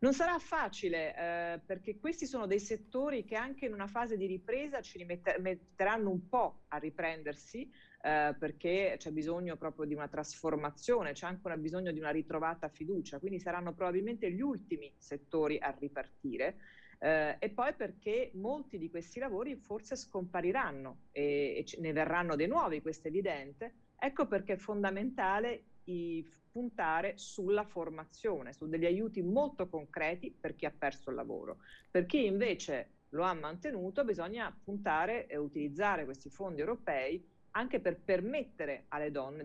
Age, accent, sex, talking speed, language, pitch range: 40-59, native, female, 155 wpm, Italian, 155-210 Hz